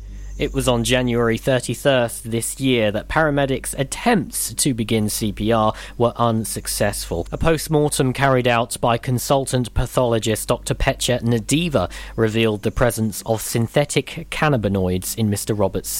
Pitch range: 105-150 Hz